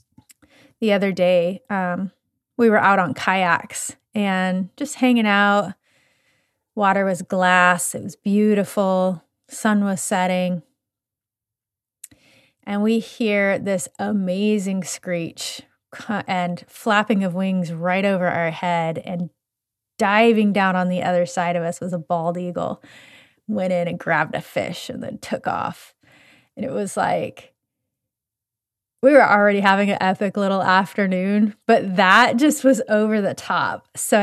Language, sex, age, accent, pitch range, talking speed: English, female, 30-49, American, 180-240 Hz, 140 wpm